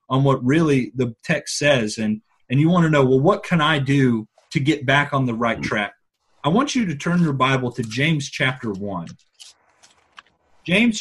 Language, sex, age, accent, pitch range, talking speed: English, male, 30-49, American, 130-175 Hz, 195 wpm